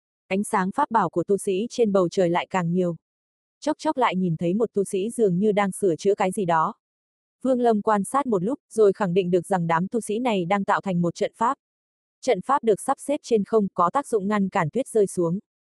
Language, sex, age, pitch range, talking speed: Vietnamese, female, 20-39, 185-225 Hz, 250 wpm